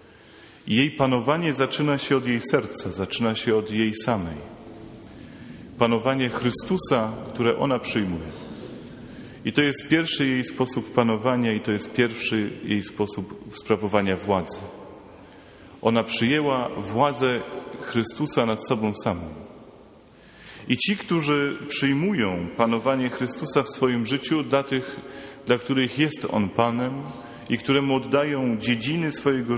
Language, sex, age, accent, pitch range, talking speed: Polish, male, 30-49, native, 110-135 Hz, 120 wpm